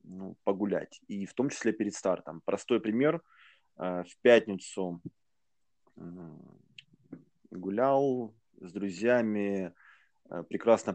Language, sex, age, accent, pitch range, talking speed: Russian, male, 20-39, native, 95-125 Hz, 90 wpm